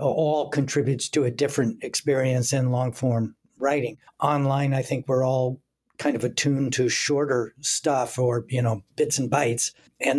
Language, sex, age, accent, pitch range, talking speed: English, male, 60-79, American, 125-145 Hz, 165 wpm